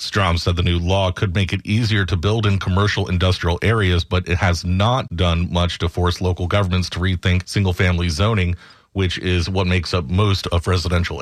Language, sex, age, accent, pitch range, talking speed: English, male, 40-59, American, 85-100 Hz, 200 wpm